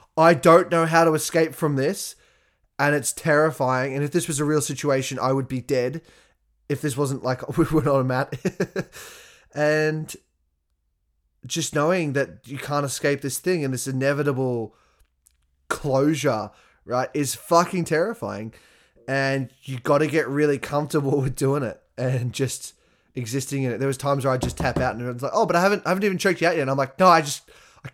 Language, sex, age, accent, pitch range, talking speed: English, male, 20-39, Australian, 130-175 Hz, 200 wpm